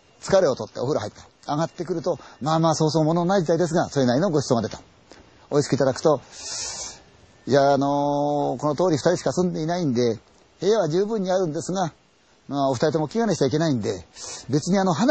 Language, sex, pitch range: Chinese, male, 120-185 Hz